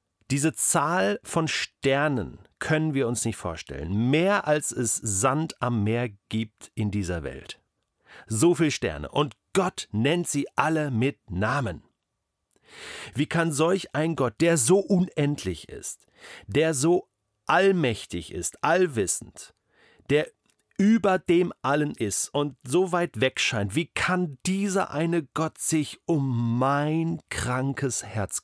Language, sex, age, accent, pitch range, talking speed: German, male, 40-59, German, 115-160 Hz, 135 wpm